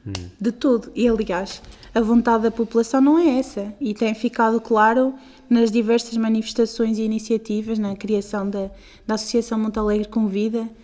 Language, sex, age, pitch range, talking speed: Portuguese, female, 20-39, 210-255 Hz, 155 wpm